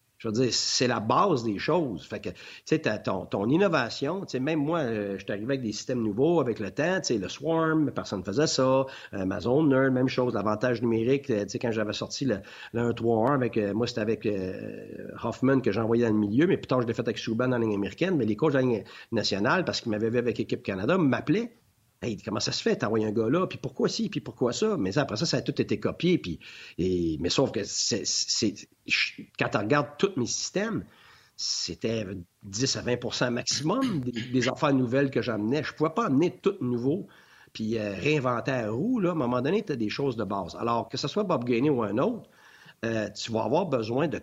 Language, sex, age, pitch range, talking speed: French, male, 50-69, 110-140 Hz, 235 wpm